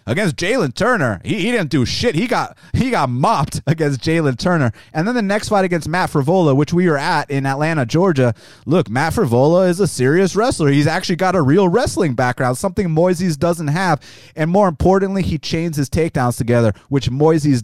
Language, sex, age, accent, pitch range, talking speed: English, male, 30-49, American, 135-190 Hz, 200 wpm